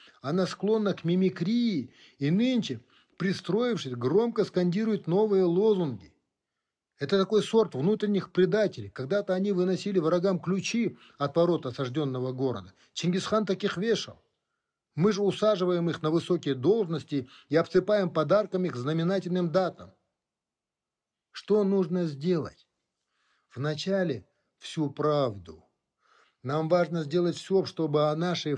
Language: Russian